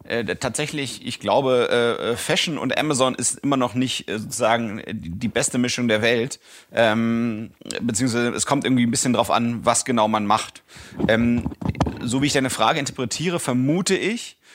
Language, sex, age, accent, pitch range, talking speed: German, male, 30-49, German, 115-130 Hz, 170 wpm